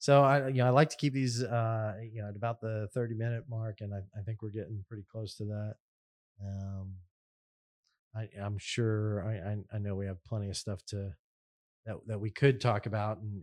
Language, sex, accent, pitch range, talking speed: English, male, American, 100-115 Hz, 220 wpm